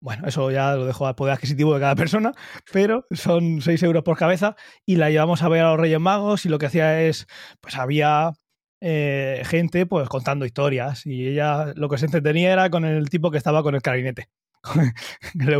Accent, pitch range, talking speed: Spanish, 140-180 Hz, 210 wpm